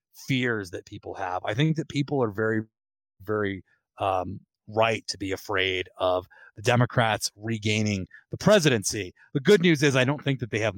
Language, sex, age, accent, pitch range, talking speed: English, male, 30-49, American, 105-130 Hz, 180 wpm